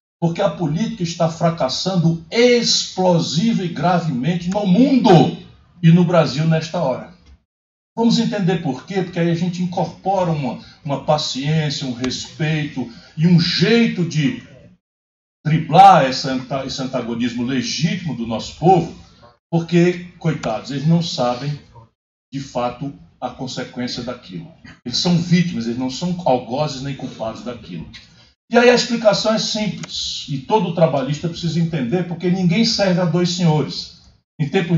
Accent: Brazilian